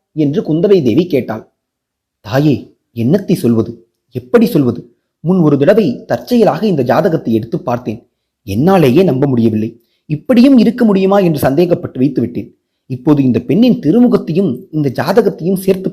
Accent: native